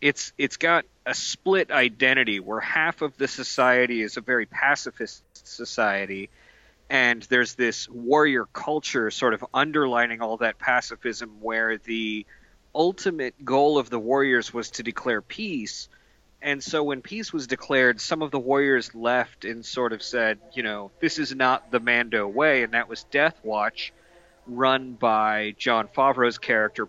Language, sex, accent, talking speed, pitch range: English, male, American, 160 wpm, 120-155 Hz